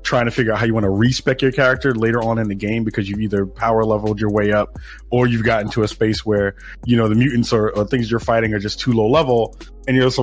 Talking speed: 280 wpm